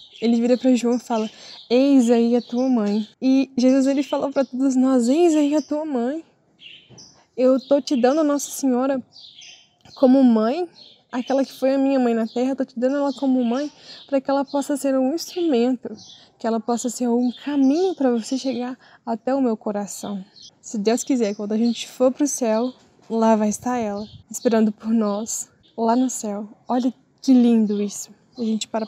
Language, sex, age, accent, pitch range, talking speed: Portuguese, female, 10-29, Brazilian, 230-270 Hz, 195 wpm